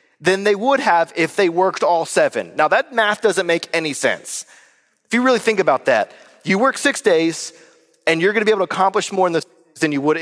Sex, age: male, 30-49